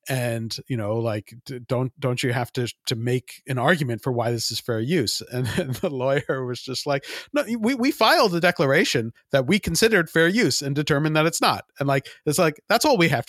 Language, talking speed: English, 225 wpm